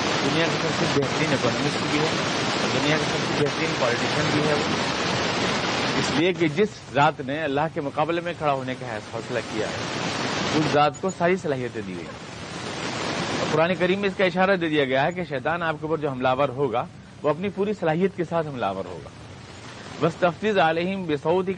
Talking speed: 170 wpm